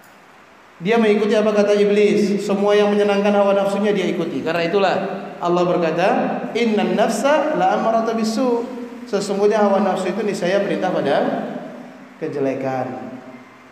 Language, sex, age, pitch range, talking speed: Indonesian, male, 30-49, 195-255 Hz, 125 wpm